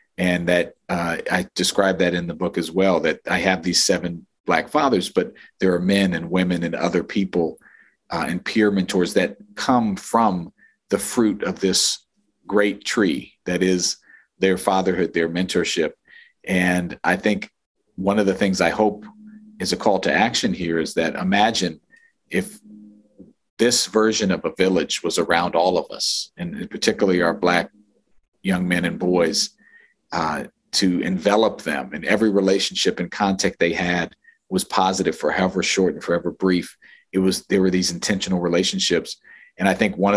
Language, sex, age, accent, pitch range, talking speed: English, male, 40-59, American, 90-100 Hz, 170 wpm